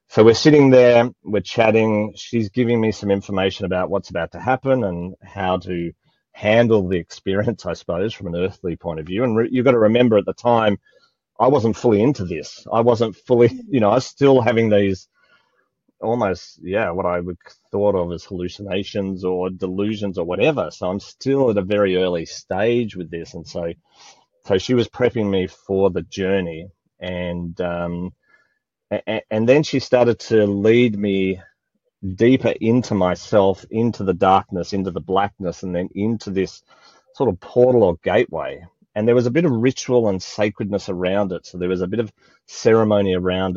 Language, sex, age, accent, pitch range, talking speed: English, male, 30-49, Australian, 90-110 Hz, 180 wpm